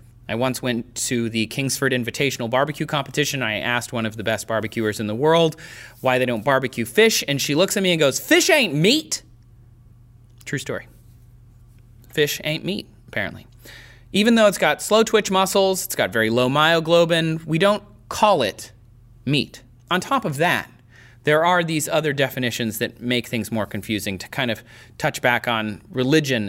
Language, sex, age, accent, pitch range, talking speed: English, male, 30-49, American, 115-165 Hz, 175 wpm